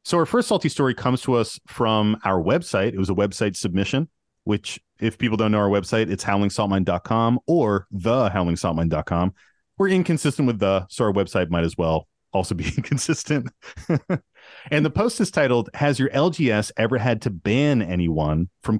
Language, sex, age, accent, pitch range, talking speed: English, male, 30-49, American, 95-135 Hz, 175 wpm